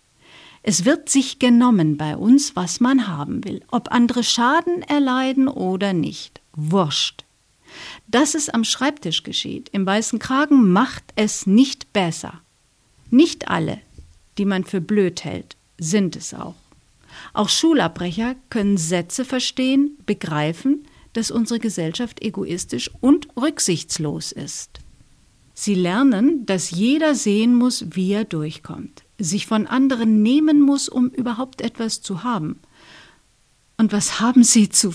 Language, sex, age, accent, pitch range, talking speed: German, female, 50-69, German, 195-265 Hz, 130 wpm